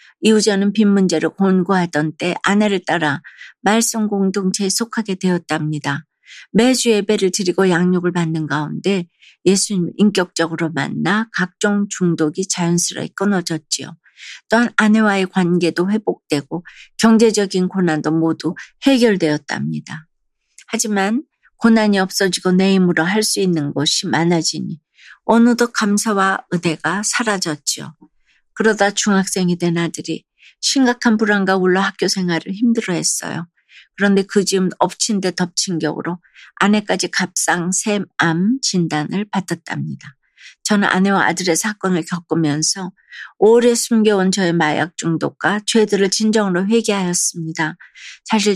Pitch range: 170-210 Hz